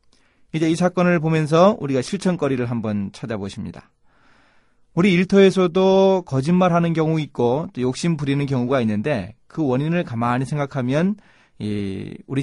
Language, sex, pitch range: Korean, male, 115-155 Hz